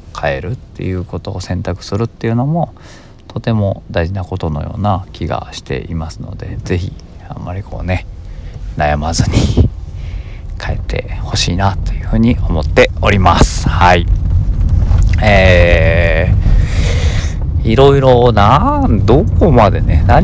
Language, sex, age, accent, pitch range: Japanese, male, 40-59, native, 85-100 Hz